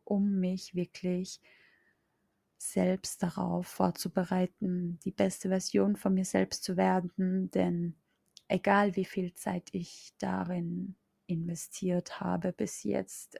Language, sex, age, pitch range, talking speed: German, female, 20-39, 175-205 Hz, 110 wpm